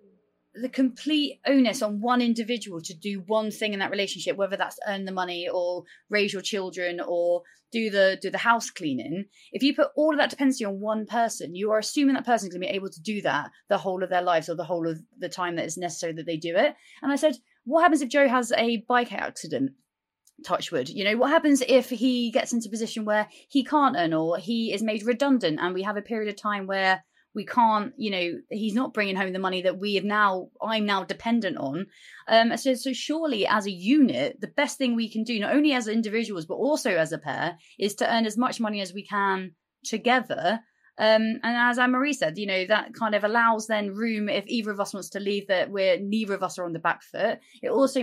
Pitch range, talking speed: 190-245 Hz, 240 wpm